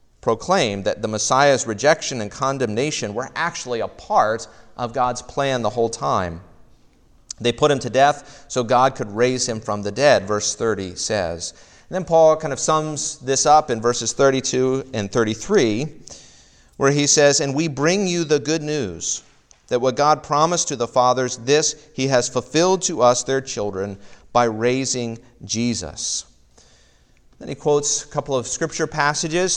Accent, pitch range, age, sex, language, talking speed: American, 110-150 Hz, 40-59, male, English, 165 wpm